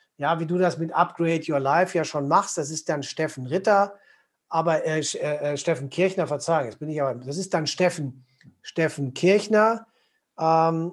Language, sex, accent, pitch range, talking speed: German, male, German, 155-190 Hz, 185 wpm